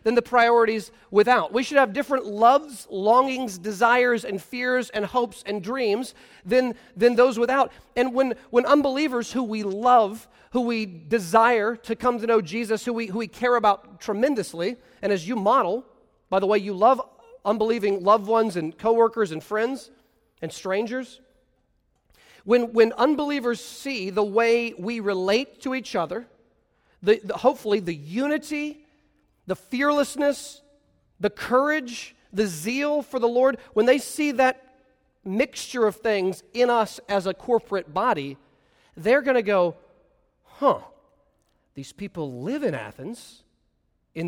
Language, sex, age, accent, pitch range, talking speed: English, male, 40-59, American, 205-260 Hz, 150 wpm